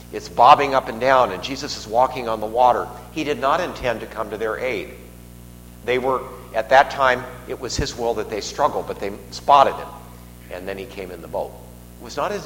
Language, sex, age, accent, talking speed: English, male, 50-69, American, 230 wpm